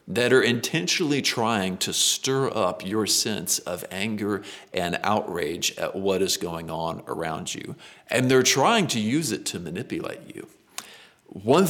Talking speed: 155 wpm